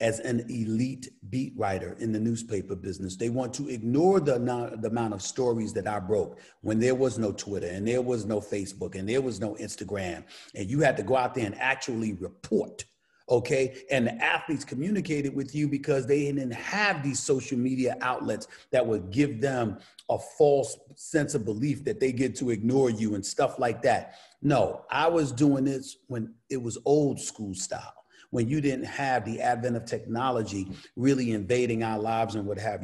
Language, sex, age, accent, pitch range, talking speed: English, male, 40-59, American, 110-135 Hz, 195 wpm